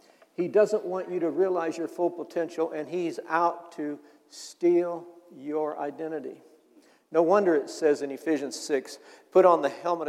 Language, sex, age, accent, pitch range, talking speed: English, male, 60-79, American, 155-185 Hz, 160 wpm